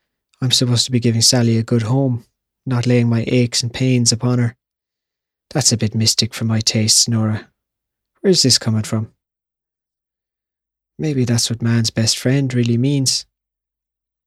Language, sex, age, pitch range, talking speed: English, male, 20-39, 110-125 Hz, 155 wpm